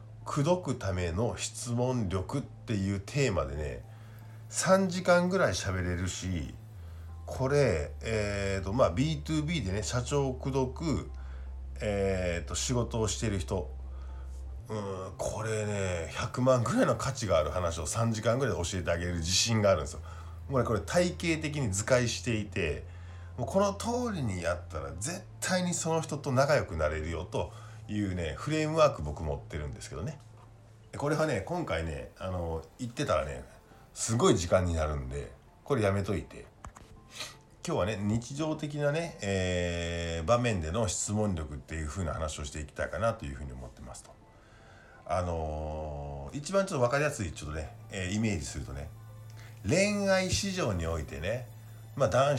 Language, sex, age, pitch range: Japanese, male, 50-69, 85-120 Hz